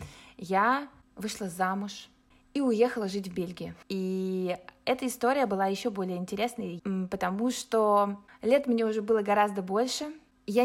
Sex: female